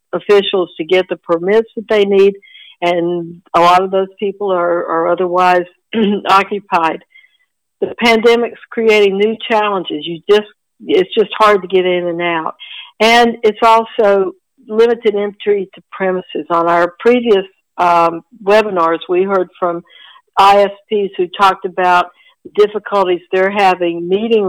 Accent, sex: American, female